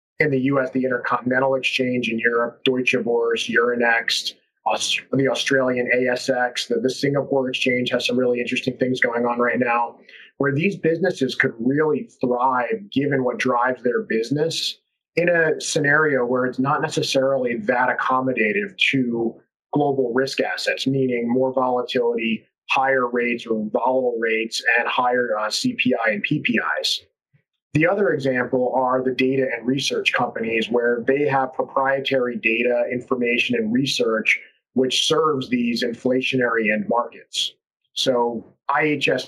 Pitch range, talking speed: 120-135 Hz, 135 wpm